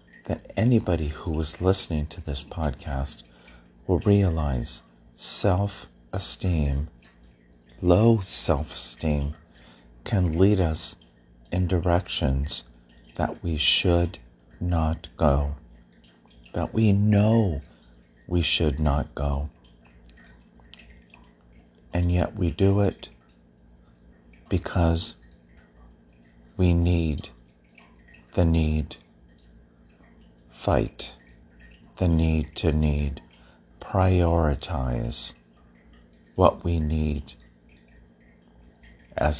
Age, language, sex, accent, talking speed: 40-59, English, male, American, 80 wpm